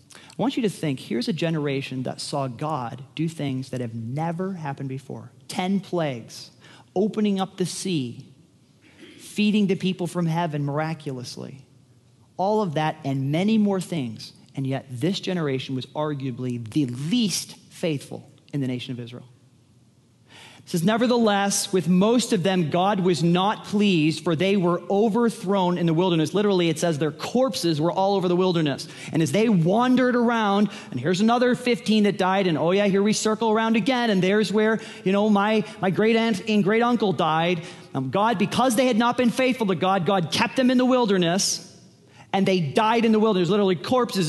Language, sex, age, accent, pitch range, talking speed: English, male, 40-59, American, 155-210 Hz, 185 wpm